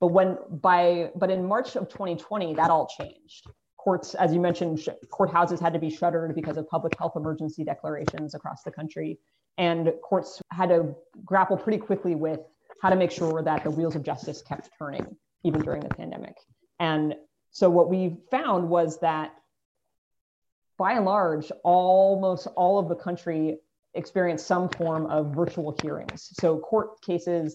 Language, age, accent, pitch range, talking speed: English, 30-49, American, 155-185 Hz, 170 wpm